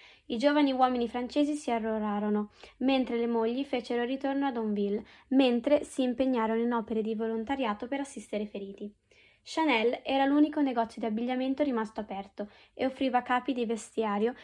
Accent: native